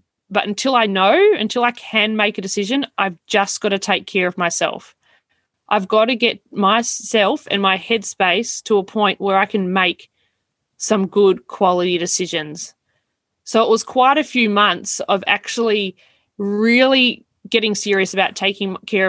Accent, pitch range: Australian, 190-220 Hz